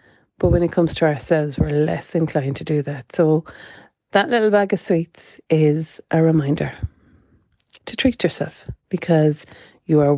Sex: female